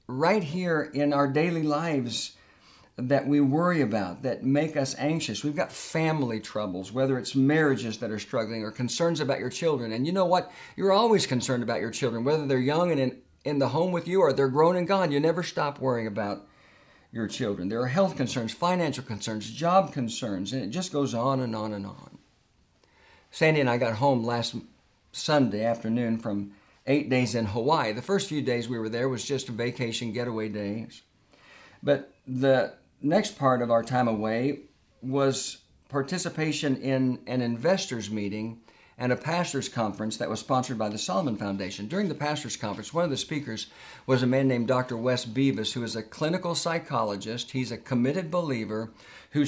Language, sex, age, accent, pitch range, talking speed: English, male, 50-69, American, 115-150 Hz, 185 wpm